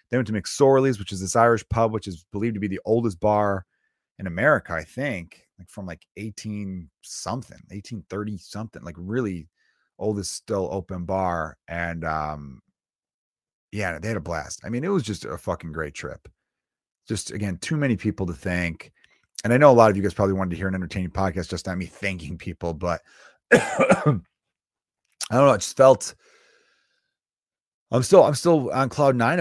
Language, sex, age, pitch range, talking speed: English, male, 30-49, 90-115 Hz, 180 wpm